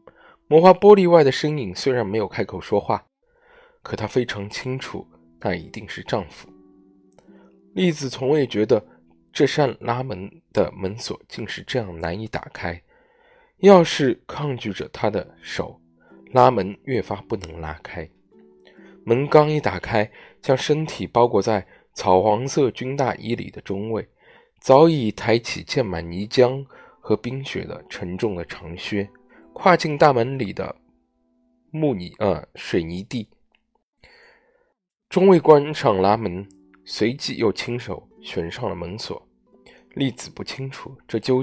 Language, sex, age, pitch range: Chinese, male, 20-39, 95-155 Hz